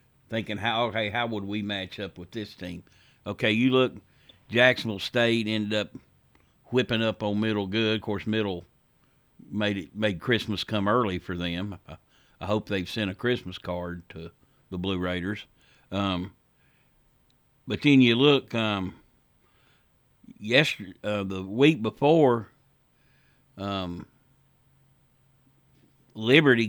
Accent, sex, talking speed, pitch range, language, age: American, male, 130 wpm, 100-125 Hz, English, 60-79